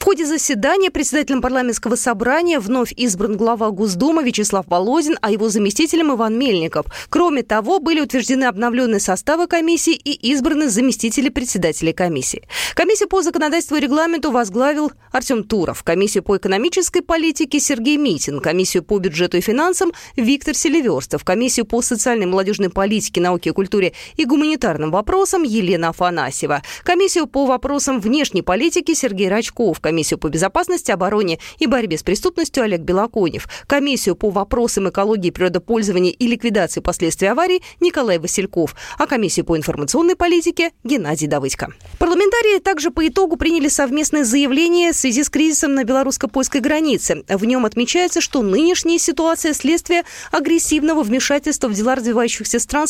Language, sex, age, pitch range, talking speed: Russian, female, 20-39, 205-315 Hz, 145 wpm